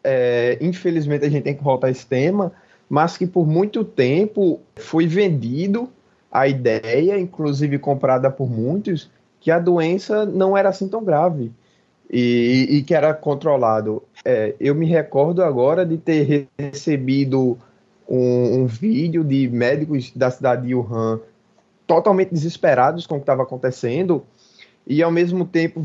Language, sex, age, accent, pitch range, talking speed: Portuguese, male, 20-39, Brazilian, 140-180 Hz, 145 wpm